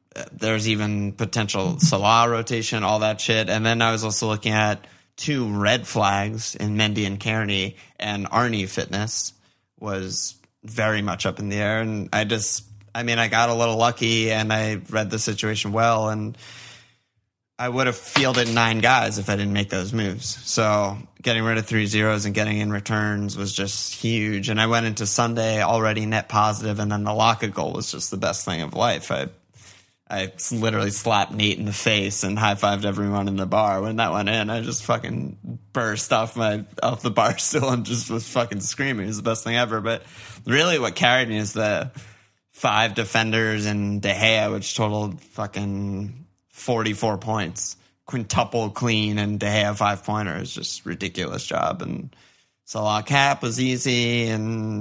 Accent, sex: American, male